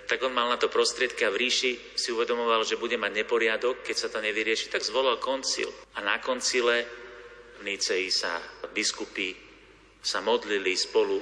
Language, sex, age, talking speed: Slovak, male, 40-59, 170 wpm